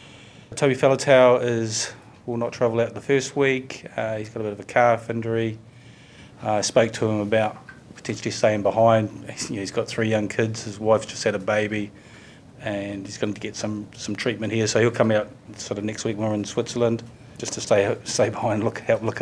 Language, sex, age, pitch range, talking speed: English, male, 30-49, 105-120 Hz, 220 wpm